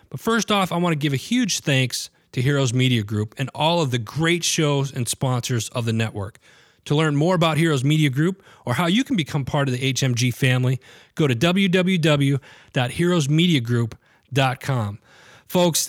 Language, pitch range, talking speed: English, 120-155 Hz, 170 wpm